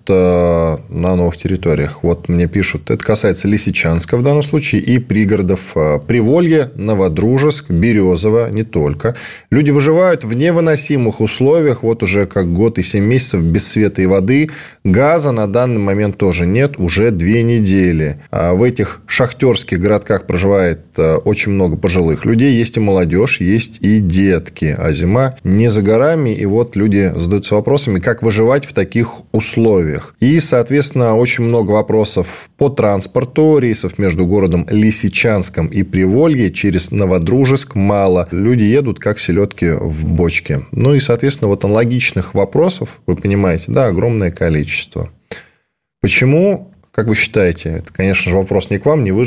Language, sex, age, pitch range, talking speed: Russian, male, 20-39, 90-120 Hz, 145 wpm